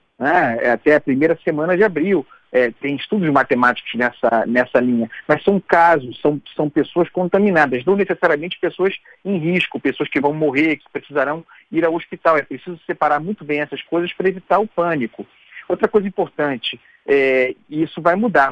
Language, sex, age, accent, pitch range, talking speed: Portuguese, male, 40-59, Brazilian, 140-175 Hz, 170 wpm